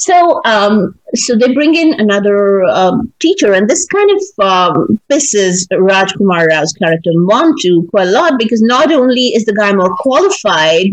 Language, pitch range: English, 195-250 Hz